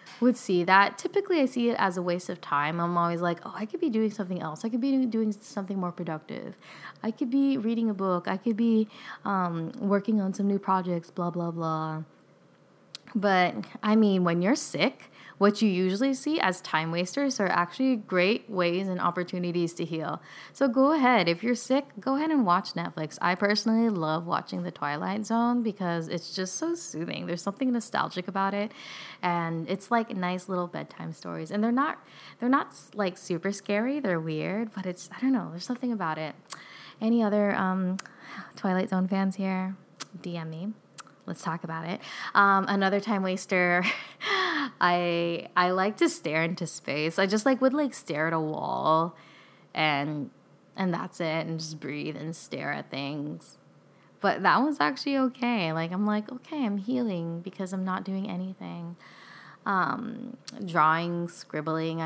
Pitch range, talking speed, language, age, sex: 170-225 Hz, 180 wpm, English, 20-39, female